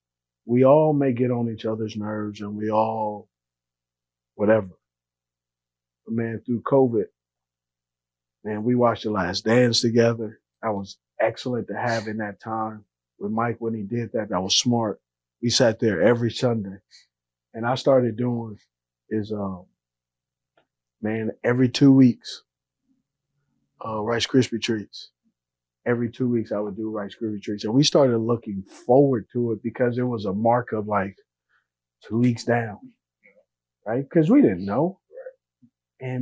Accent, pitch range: American, 90-125 Hz